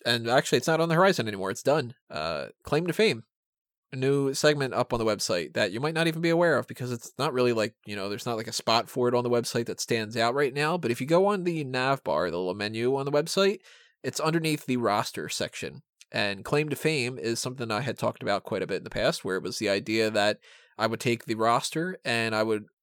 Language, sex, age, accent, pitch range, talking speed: English, male, 20-39, American, 115-145 Hz, 265 wpm